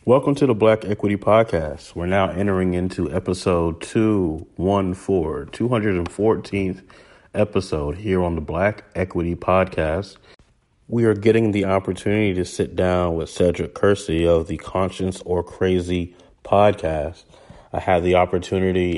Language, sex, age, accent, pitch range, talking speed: English, male, 30-49, American, 85-95 Hz, 130 wpm